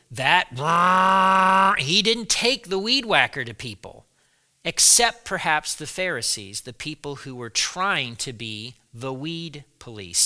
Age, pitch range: 40-59, 135-195 Hz